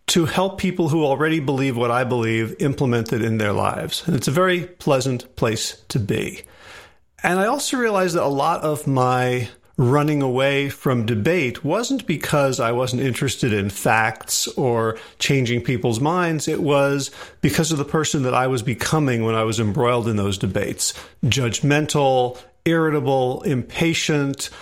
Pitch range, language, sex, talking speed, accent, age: 120-150 Hz, English, male, 160 wpm, American, 40-59